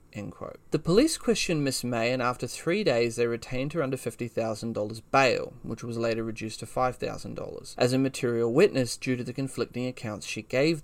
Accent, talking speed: Australian, 185 wpm